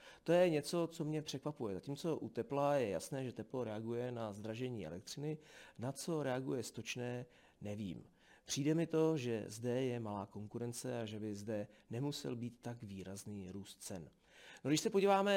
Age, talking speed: 40-59, 170 wpm